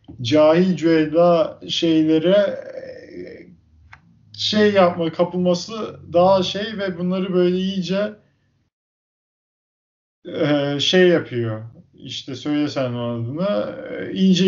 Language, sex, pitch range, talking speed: Turkish, male, 125-170 Hz, 80 wpm